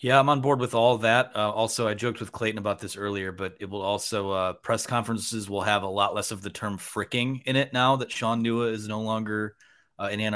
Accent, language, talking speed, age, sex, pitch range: American, English, 255 wpm, 30-49, male, 100-115 Hz